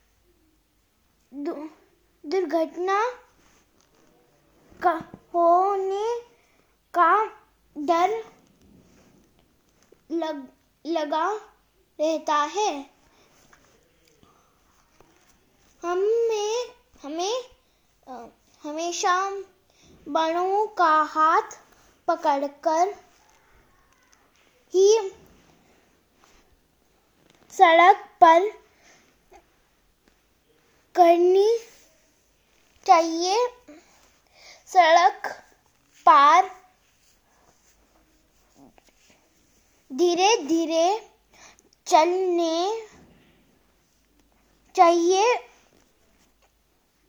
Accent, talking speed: Indian, 30 wpm